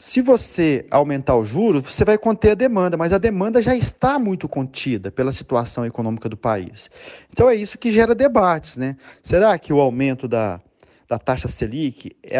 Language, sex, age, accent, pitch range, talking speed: Portuguese, male, 40-59, Brazilian, 130-185 Hz, 185 wpm